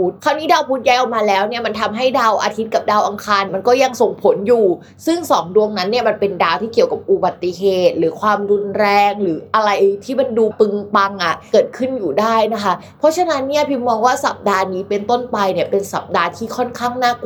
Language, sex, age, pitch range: Thai, female, 20-39, 195-255 Hz